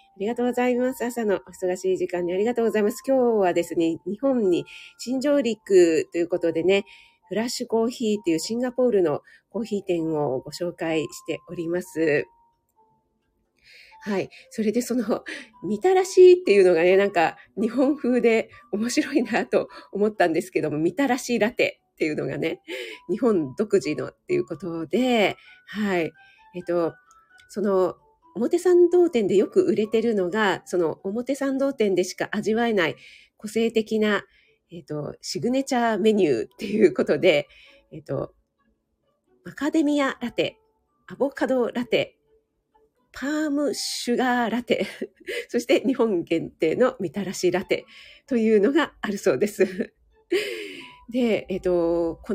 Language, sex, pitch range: Japanese, female, 185-280 Hz